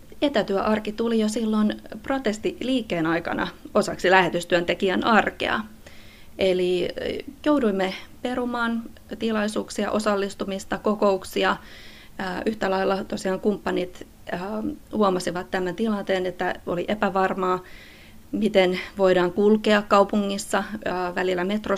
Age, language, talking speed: 20-39, Finnish, 85 wpm